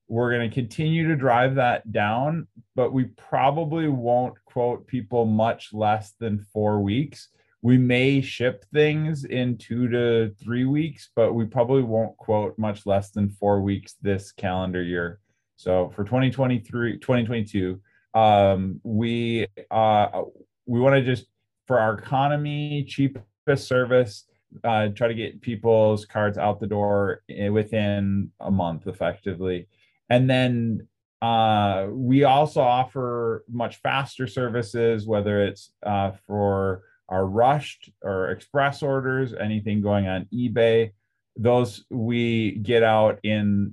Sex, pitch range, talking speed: male, 100-125 Hz, 130 wpm